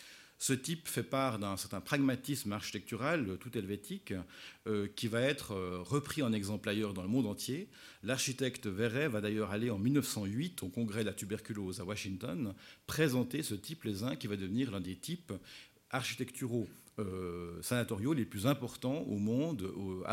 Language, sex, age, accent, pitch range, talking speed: French, male, 50-69, French, 95-125 Hz, 165 wpm